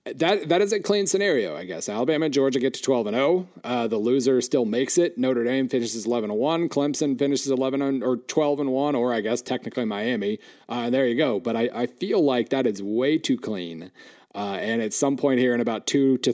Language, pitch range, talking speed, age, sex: English, 120-150 Hz, 240 wpm, 40-59, male